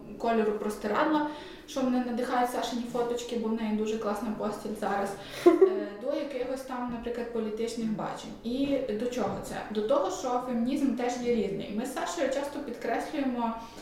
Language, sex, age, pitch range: Ukrainian, female, 20-39, 220-260 Hz